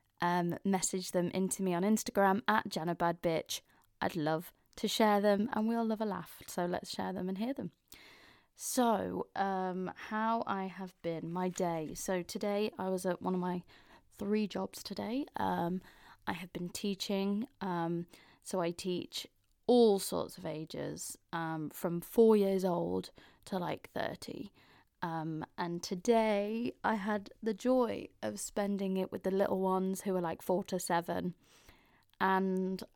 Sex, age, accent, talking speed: female, 20-39, British, 160 wpm